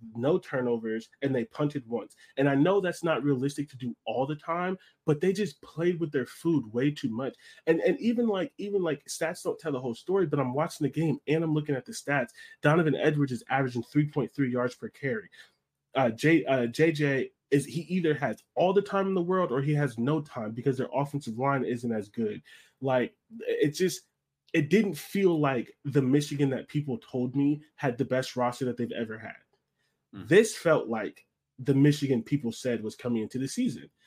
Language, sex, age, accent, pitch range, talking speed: English, male, 20-39, American, 125-165 Hz, 205 wpm